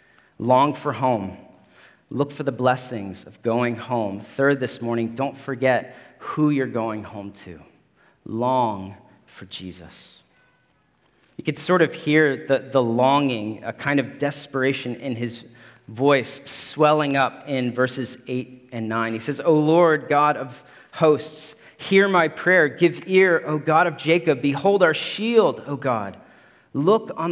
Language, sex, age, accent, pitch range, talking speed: English, male, 40-59, American, 125-155 Hz, 150 wpm